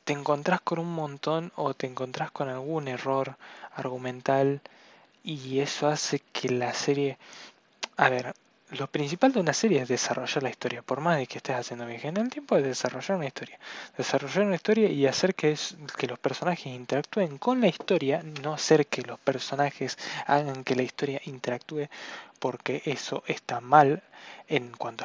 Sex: male